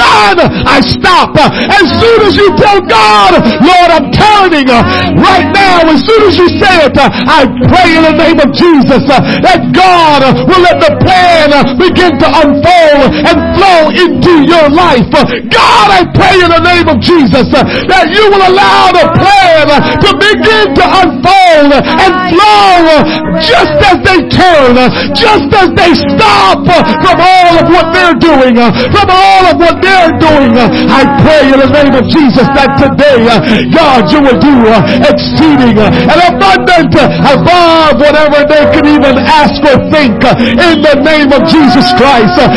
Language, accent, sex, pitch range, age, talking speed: English, American, male, 290-370 Hz, 50-69, 155 wpm